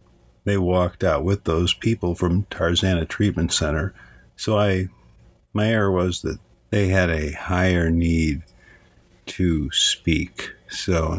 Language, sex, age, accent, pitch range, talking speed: English, male, 50-69, American, 80-95 Hz, 125 wpm